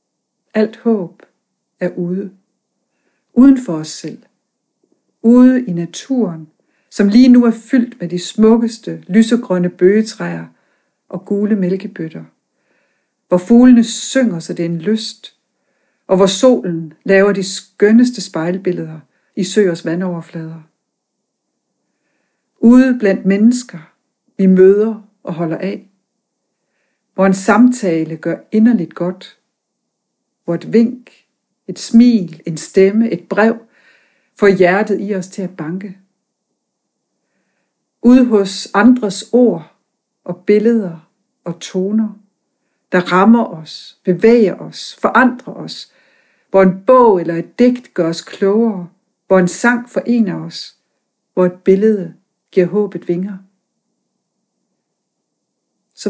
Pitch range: 180-230 Hz